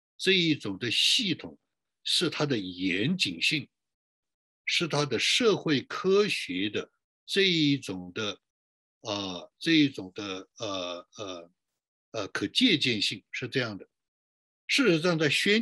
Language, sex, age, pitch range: Chinese, male, 60-79, 115-175 Hz